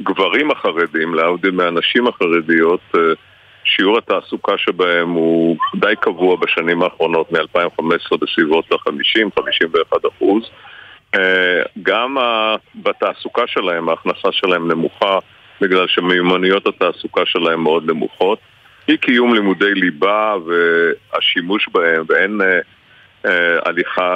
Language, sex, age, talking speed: Hebrew, male, 50-69, 90 wpm